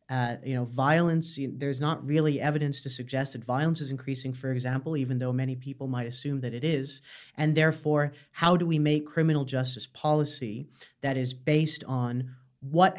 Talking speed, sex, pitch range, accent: 180 wpm, male, 130-150 Hz, American